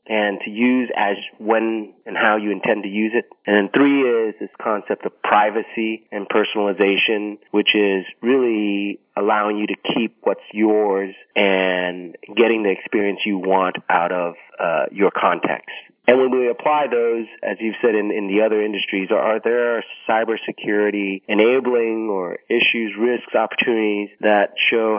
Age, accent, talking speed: 30-49, American, 155 wpm